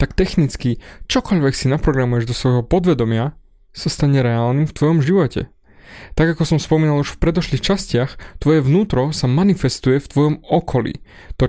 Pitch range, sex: 120-150 Hz, male